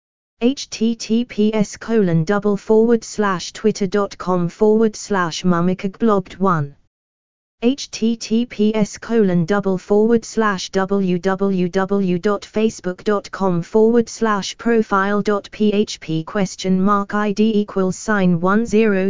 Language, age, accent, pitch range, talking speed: English, 20-39, British, 185-220 Hz, 100 wpm